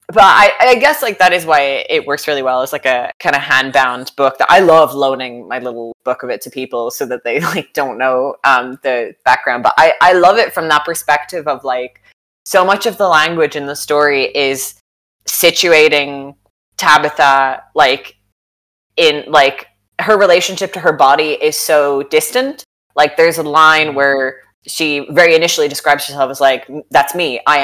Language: English